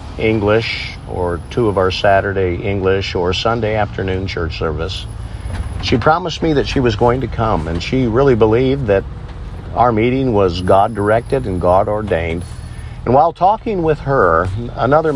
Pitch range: 90-115 Hz